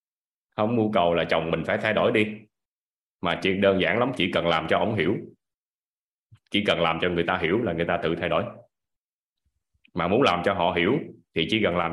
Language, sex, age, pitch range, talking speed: Vietnamese, male, 20-39, 85-110 Hz, 220 wpm